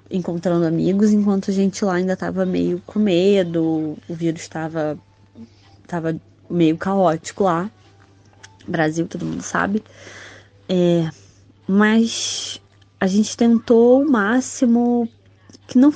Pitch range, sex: 165-200 Hz, female